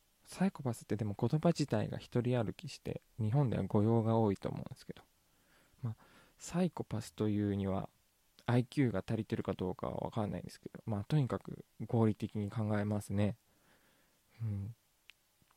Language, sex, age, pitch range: Japanese, male, 20-39, 100-120 Hz